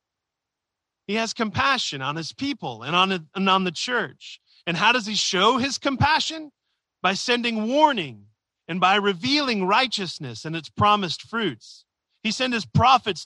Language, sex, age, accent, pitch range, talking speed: English, male, 30-49, American, 150-230 Hz, 150 wpm